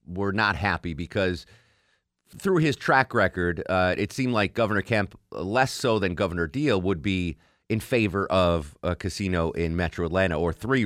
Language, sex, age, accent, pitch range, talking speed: English, male, 30-49, American, 90-115 Hz, 170 wpm